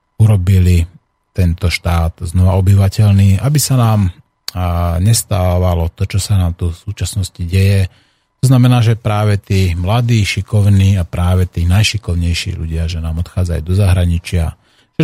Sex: male